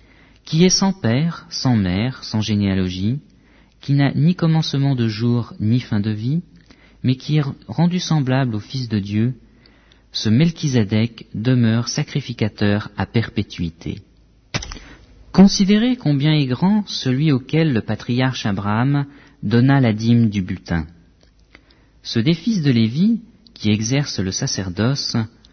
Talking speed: 130 wpm